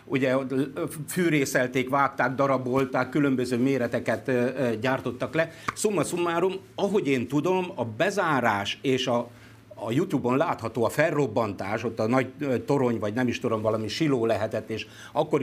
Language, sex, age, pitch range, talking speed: Hungarian, male, 50-69, 115-145 Hz, 130 wpm